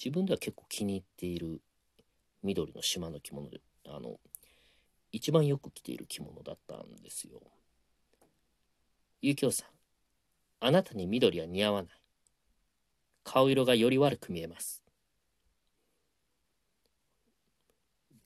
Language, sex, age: Japanese, male, 40-59